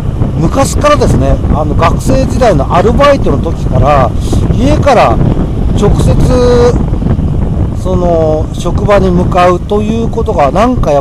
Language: Japanese